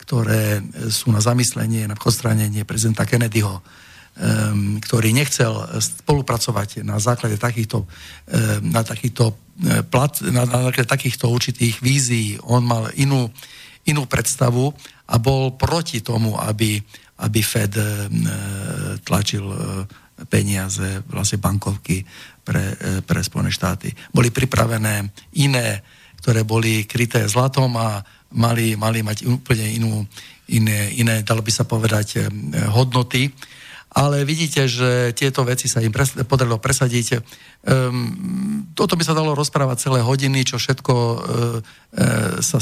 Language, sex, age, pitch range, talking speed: Slovak, male, 50-69, 110-130 Hz, 120 wpm